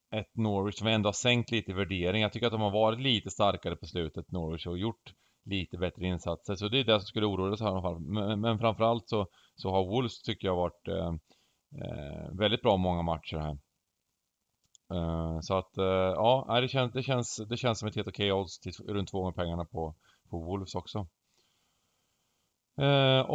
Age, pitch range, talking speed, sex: 30-49, 95-120 Hz, 195 wpm, male